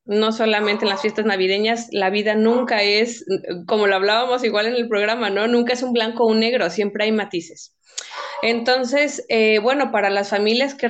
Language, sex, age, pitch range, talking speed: Spanish, female, 30-49, 200-230 Hz, 195 wpm